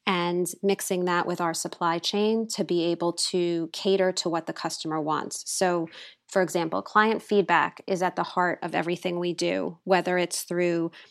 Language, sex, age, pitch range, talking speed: English, female, 20-39, 170-195 Hz, 180 wpm